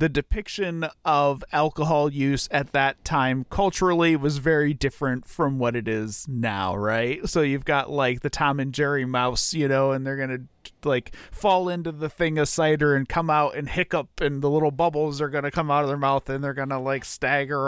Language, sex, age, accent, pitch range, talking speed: English, male, 40-59, American, 130-165 Hz, 215 wpm